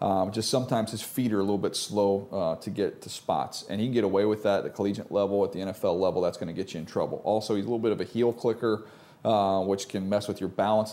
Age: 40-59